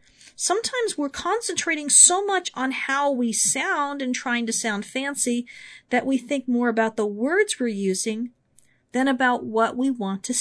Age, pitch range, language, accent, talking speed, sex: 40-59, 225-295 Hz, English, American, 165 wpm, female